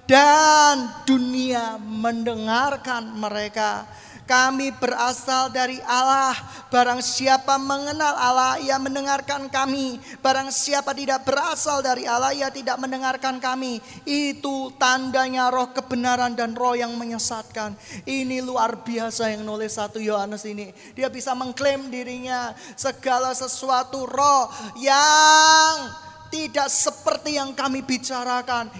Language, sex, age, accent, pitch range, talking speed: Indonesian, male, 20-39, native, 210-270 Hz, 115 wpm